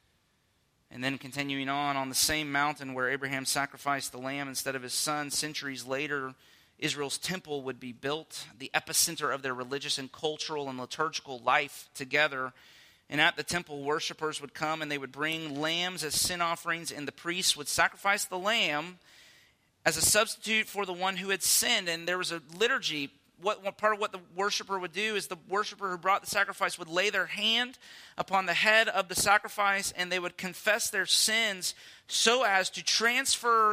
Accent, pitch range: American, 145-205 Hz